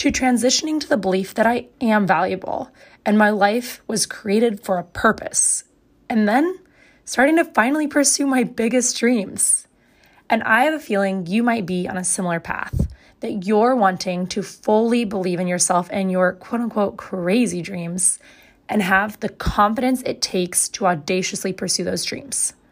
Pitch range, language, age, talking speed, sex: 190-235 Hz, English, 20-39, 165 wpm, female